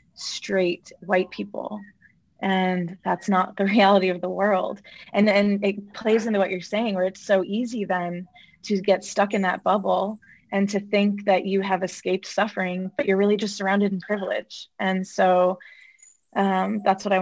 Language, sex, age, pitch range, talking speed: English, female, 20-39, 185-210 Hz, 180 wpm